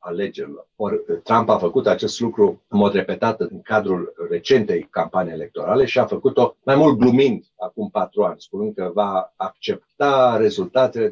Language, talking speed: Romanian, 155 wpm